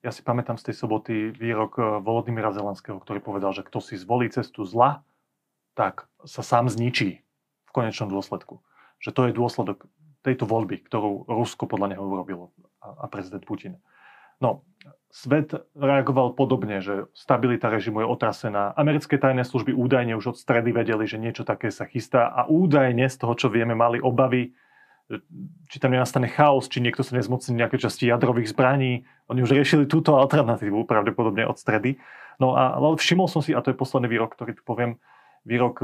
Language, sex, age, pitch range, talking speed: Slovak, male, 30-49, 110-130 Hz, 170 wpm